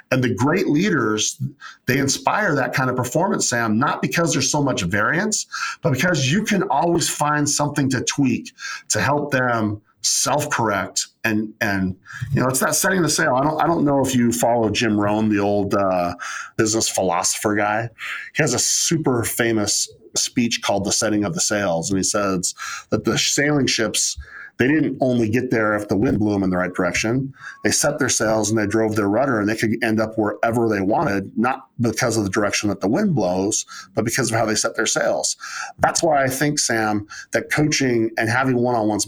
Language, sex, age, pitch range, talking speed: English, male, 40-59, 105-140 Hz, 200 wpm